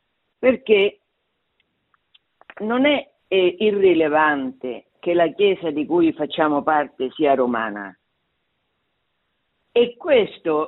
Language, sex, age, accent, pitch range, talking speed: Italian, female, 50-69, native, 170-260 Hz, 90 wpm